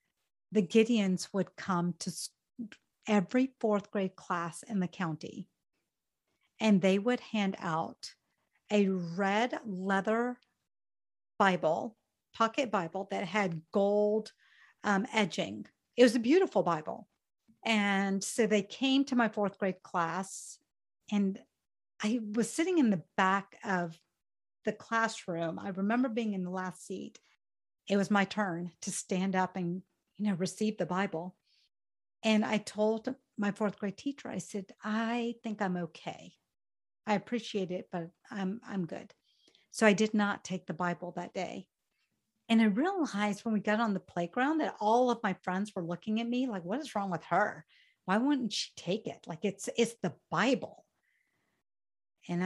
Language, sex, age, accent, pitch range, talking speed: English, female, 50-69, American, 185-225 Hz, 155 wpm